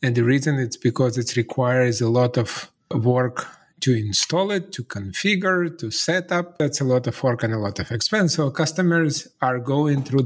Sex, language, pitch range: male, English, 120-160 Hz